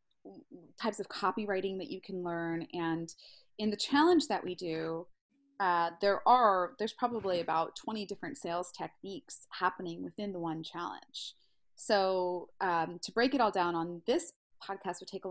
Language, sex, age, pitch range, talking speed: English, female, 20-39, 175-225 Hz, 165 wpm